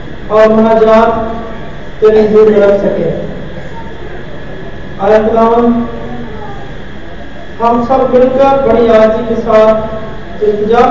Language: Hindi